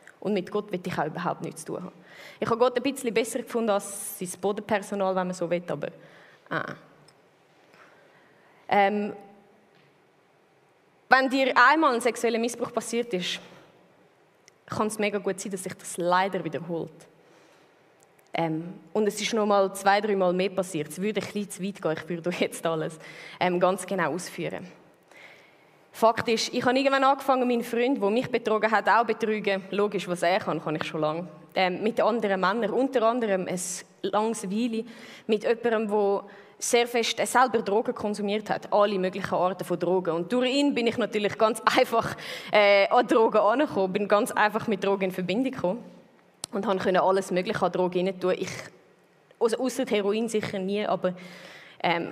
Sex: female